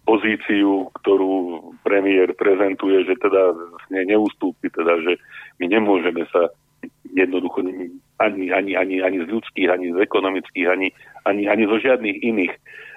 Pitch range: 95-115 Hz